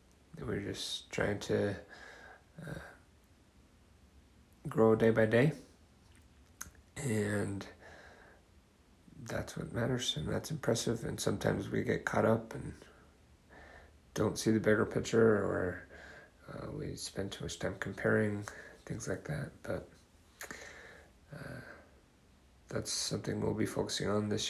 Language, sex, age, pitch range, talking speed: English, male, 30-49, 100-110 Hz, 120 wpm